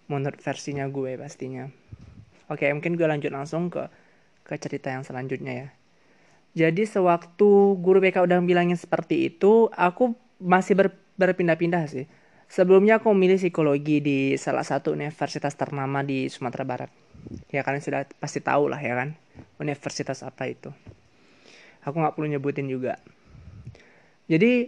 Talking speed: 140 wpm